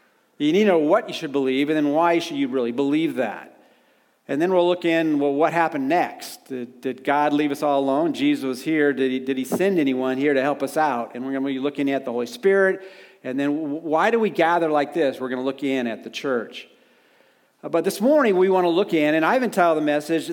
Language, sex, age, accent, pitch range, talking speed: English, male, 40-59, American, 135-185 Hz, 250 wpm